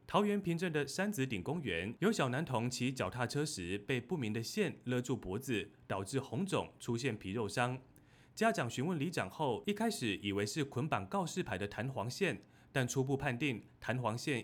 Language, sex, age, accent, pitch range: Chinese, male, 30-49, native, 110-145 Hz